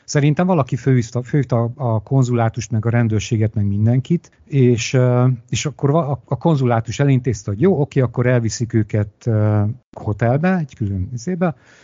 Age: 50-69